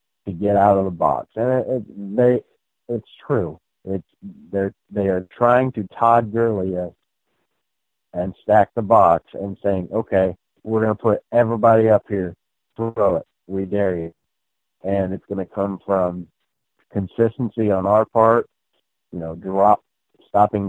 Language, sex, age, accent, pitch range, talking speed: English, male, 60-79, American, 95-125 Hz, 150 wpm